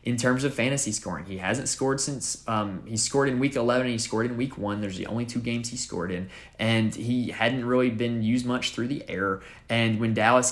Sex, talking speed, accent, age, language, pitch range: male, 240 wpm, American, 20-39, English, 105-125 Hz